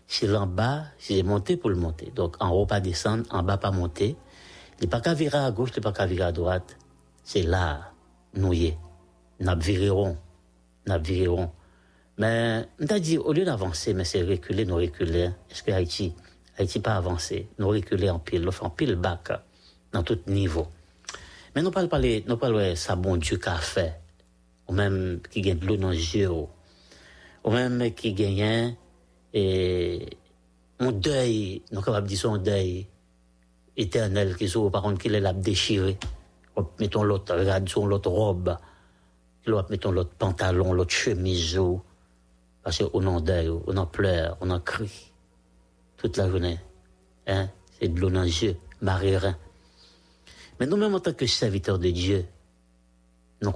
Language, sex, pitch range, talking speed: English, male, 85-105 Hz, 160 wpm